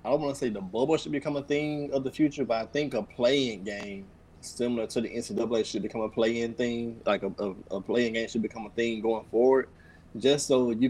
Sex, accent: male, American